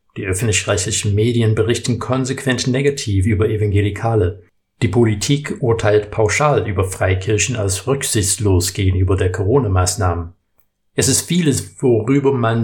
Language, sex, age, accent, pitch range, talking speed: German, male, 60-79, German, 100-125 Hz, 115 wpm